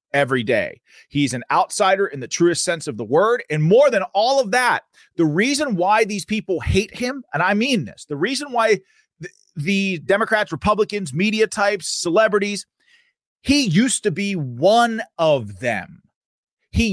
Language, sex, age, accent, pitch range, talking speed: English, male, 30-49, American, 145-210 Hz, 165 wpm